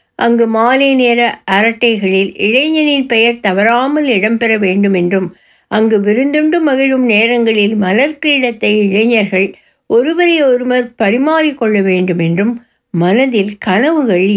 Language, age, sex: Tamil, 60-79, female